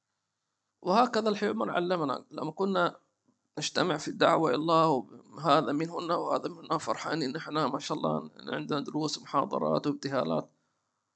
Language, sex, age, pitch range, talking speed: English, male, 50-69, 175-220 Hz, 140 wpm